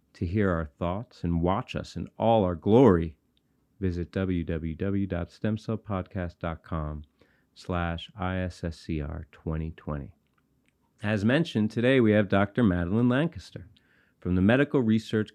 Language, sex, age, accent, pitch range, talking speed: English, male, 40-59, American, 85-115 Hz, 100 wpm